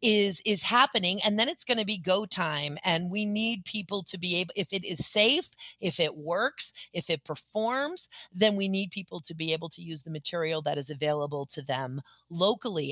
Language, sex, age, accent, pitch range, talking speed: English, female, 30-49, American, 165-215 Hz, 210 wpm